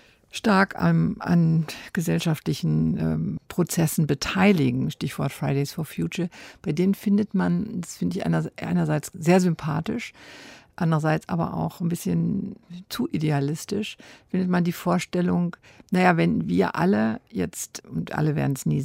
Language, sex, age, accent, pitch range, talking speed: German, female, 60-79, German, 135-190 Hz, 135 wpm